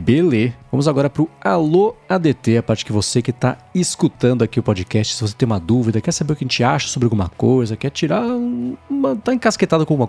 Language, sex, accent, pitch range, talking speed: Portuguese, male, Brazilian, 115-175 Hz, 230 wpm